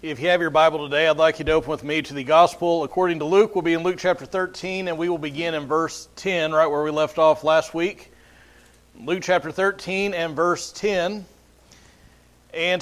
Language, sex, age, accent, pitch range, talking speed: English, male, 40-59, American, 160-195 Hz, 215 wpm